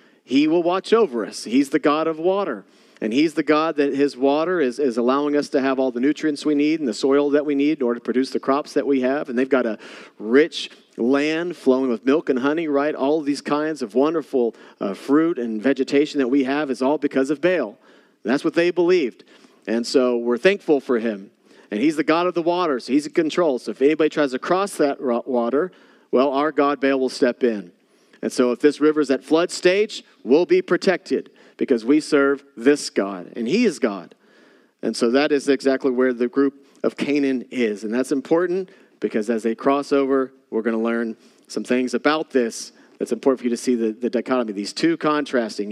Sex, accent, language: male, American, English